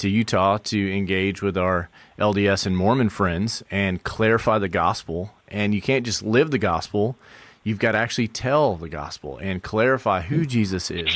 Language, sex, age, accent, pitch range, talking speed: English, male, 30-49, American, 100-120 Hz, 175 wpm